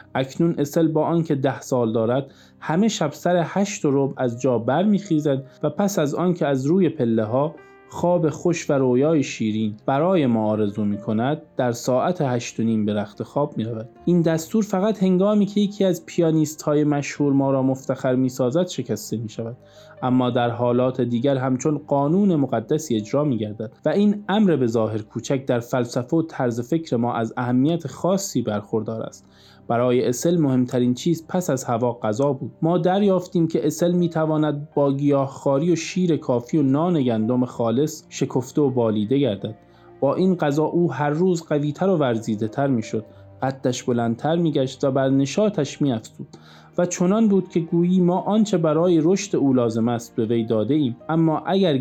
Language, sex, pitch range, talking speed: Persian, male, 120-165 Hz, 175 wpm